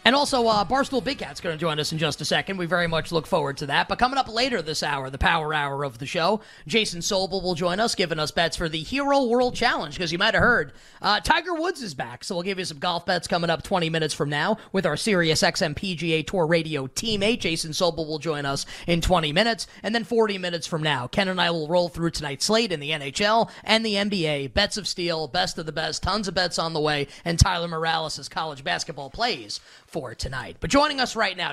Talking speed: 250 wpm